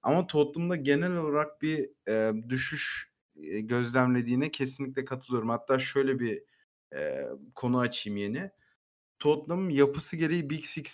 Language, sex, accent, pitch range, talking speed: Turkish, male, native, 125-155 Hz, 125 wpm